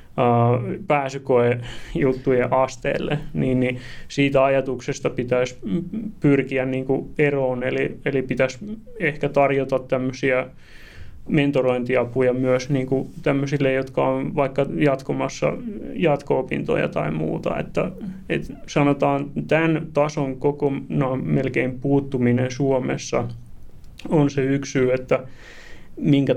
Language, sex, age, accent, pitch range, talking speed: Finnish, male, 20-39, native, 130-145 Hz, 95 wpm